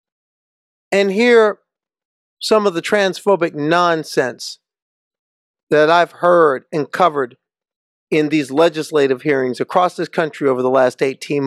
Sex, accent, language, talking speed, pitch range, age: male, American, English, 120 wpm, 150-185 Hz, 50-69